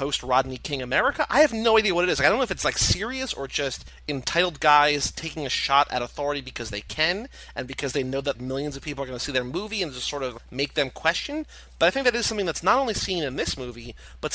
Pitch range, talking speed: 130-155 Hz, 270 wpm